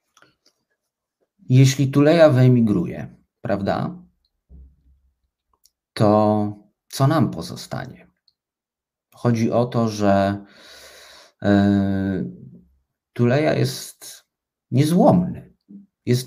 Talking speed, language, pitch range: 65 wpm, Polish, 100-135 Hz